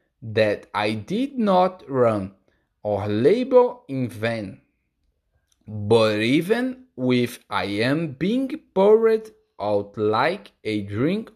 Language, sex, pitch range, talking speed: Portuguese, male, 85-130 Hz, 105 wpm